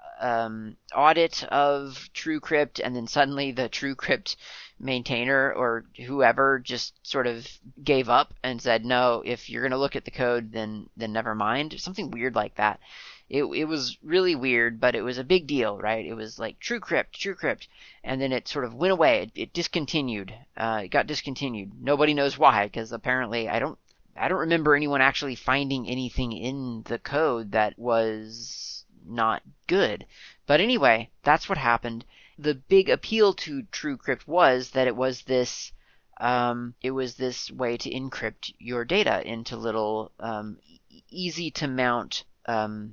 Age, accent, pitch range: 30-49, American, 115-140 Hz